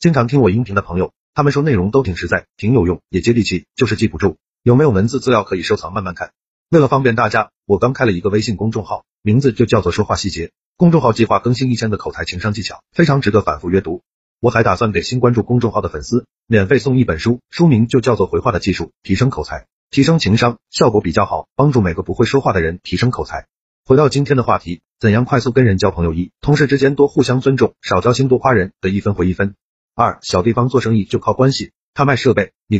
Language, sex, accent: Chinese, male, native